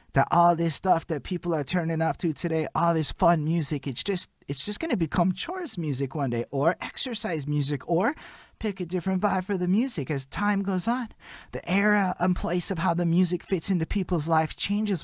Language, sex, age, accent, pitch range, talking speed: English, male, 20-39, American, 145-185 Hz, 205 wpm